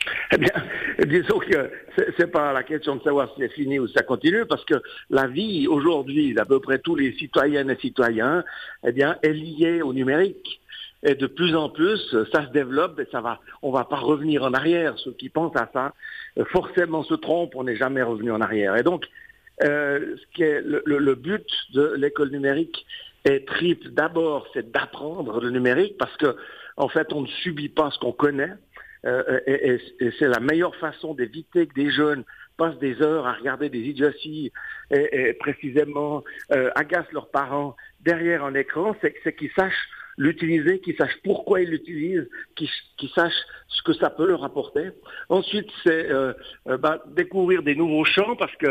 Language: French